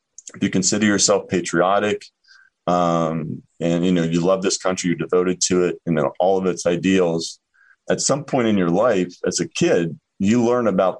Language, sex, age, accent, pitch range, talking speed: English, male, 30-49, American, 85-95 Hz, 195 wpm